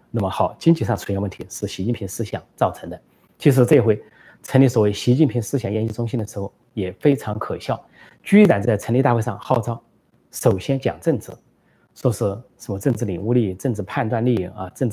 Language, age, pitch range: Chinese, 30-49, 100-125 Hz